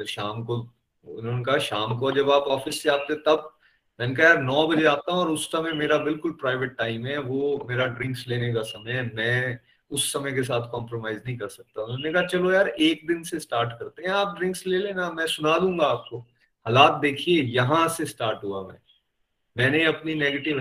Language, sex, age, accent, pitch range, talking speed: Hindi, male, 30-49, native, 120-160 Hz, 105 wpm